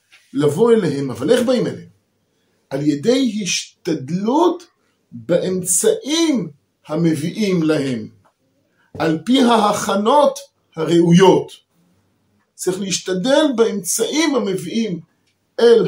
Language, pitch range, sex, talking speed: Hebrew, 135-210 Hz, male, 80 wpm